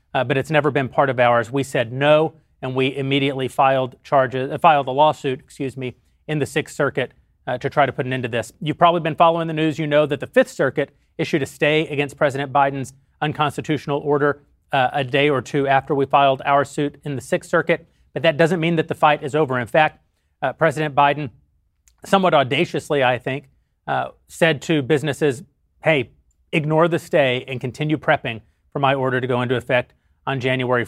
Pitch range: 130-155 Hz